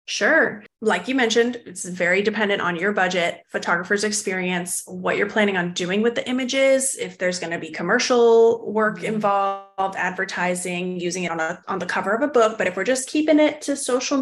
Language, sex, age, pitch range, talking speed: English, female, 20-39, 185-250 Hz, 200 wpm